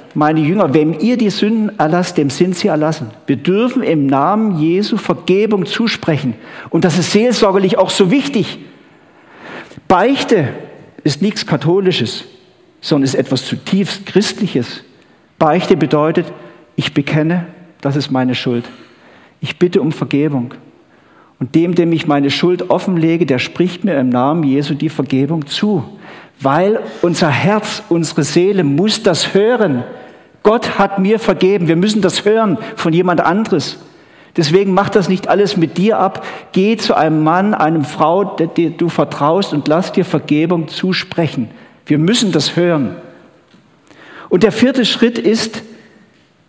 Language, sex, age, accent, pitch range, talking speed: German, male, 50-69, German, 155-200 Hz, 145 wpm